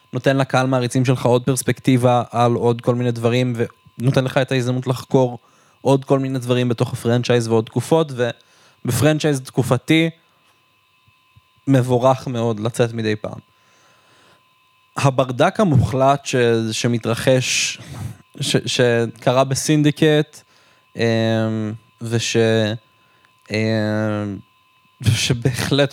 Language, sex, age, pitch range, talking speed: Hebrew, male, 20-39, 115-135 Hz, 90 wpm